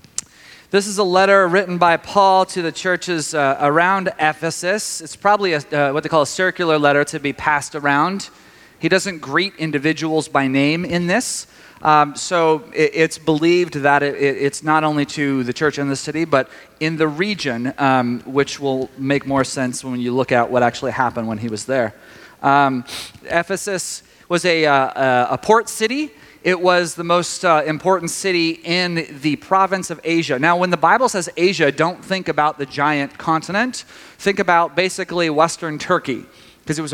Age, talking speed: 30-49, 175 wpm